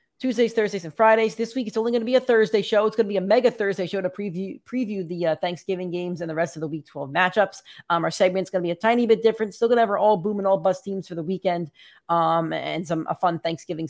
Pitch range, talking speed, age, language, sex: 180-220 Hz, 280 wpm, 30-49, English, female